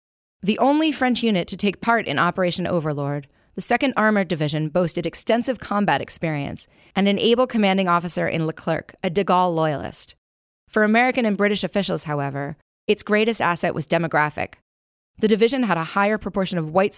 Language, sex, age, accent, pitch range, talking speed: English, female, 20-39, American, 160-200 Hz, 170 wpm